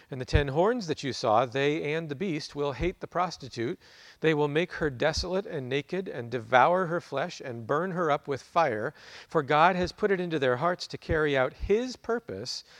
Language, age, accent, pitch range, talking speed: English, 40-59, American, 120-155 Hz, 210 wpm